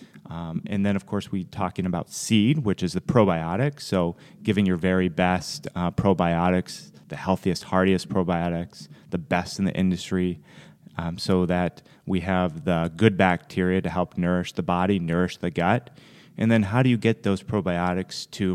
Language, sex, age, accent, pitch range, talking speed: English, male, 30-49, American, 90-115 Hz, 175 wpm